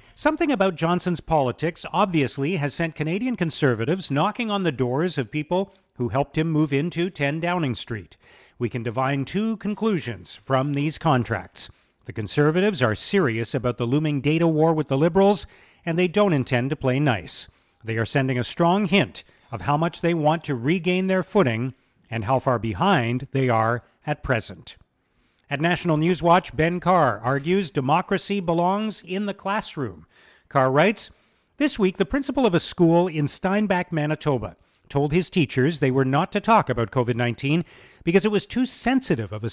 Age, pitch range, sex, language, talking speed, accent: 40-59, 130-180 Hz, male, English, 175 wpm, American